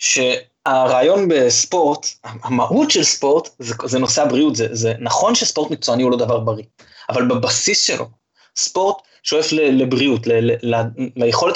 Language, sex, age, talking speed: Hebrew, male, 20-39, 145 wpm